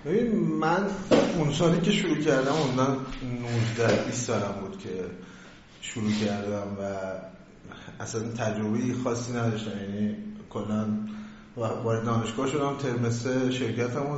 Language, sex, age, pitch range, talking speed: Persian, male, 30-49, 115-145 Hz, 120 wpm